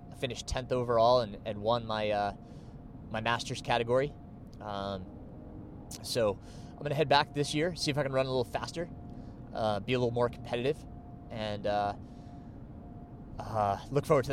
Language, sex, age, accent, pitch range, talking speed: English, male, 20-39, American, 110-130 Hz, 170 wpm